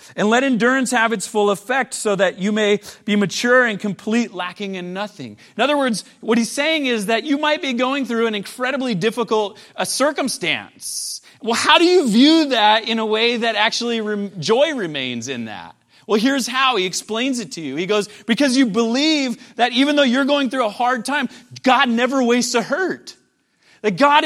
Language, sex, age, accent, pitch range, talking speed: English, male, 30-49, American, 205-265 Hz, 200 wpm